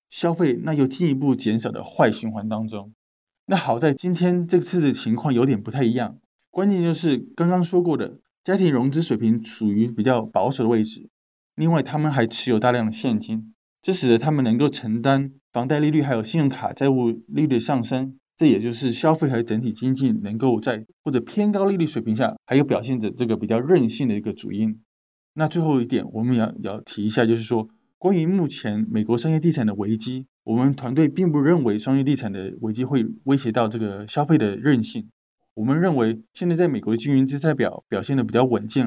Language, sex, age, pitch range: Chinese, male, 20-39, 110-155 Hz